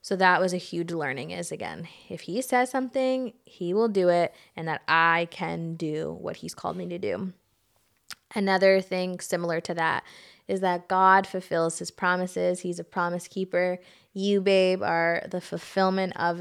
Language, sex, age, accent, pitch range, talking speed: English, female, 20-39, American, 170-195 Hz, 175 wpm